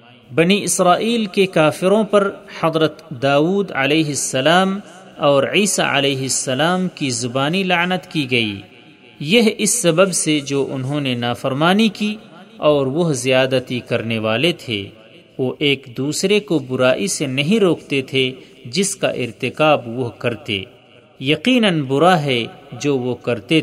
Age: 40-59